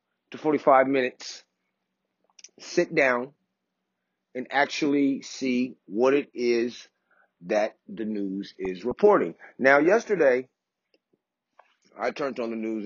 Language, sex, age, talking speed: English, male, 40-59, 105 wpm